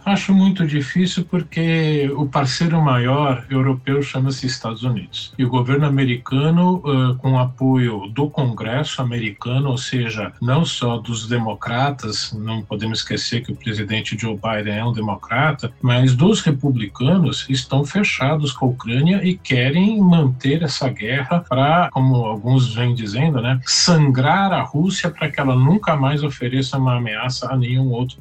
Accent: Brazilian